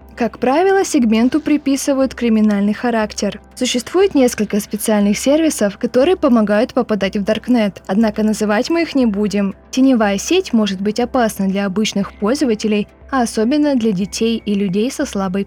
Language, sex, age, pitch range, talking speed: Russian, female, 20-39, 210-275 Hz, 145 wpm